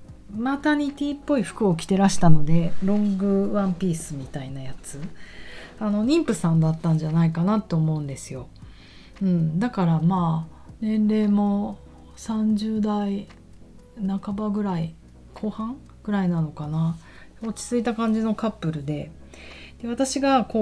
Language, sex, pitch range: Japanese, female, 155-200 Hz